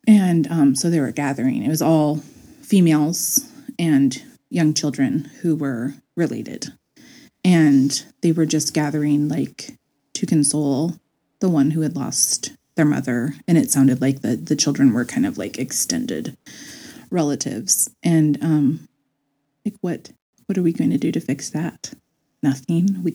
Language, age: English, 30-49